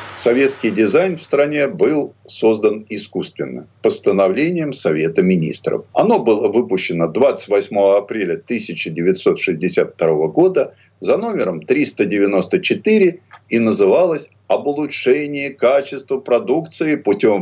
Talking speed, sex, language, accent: 95 wpm, male, Russian, native